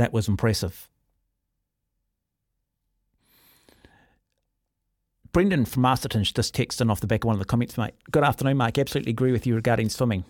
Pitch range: 105-125 Hz